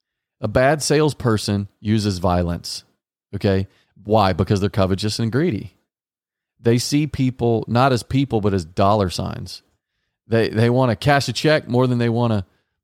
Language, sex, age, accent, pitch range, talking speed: English, male, 40-59, American, 100-125 Hz, 160 wpm